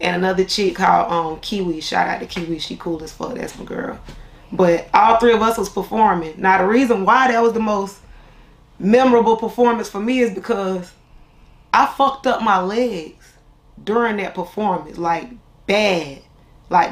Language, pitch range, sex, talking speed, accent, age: English, 175-235 Hz, female, 175 wpm, American, 20-39